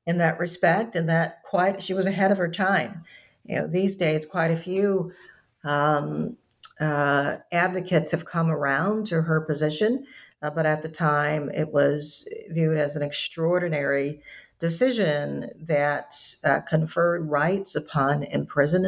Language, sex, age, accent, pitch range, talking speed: English, female, 50-69, American, 150-190 Hz, 145 wpm